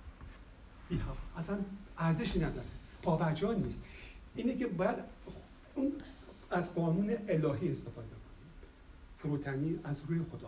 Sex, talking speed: male, 115 wpm